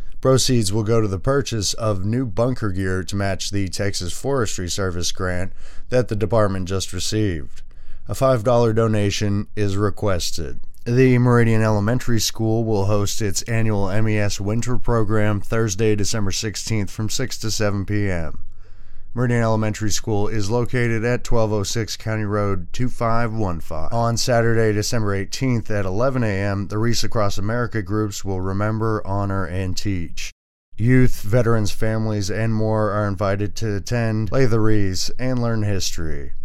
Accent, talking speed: American, 145 wpm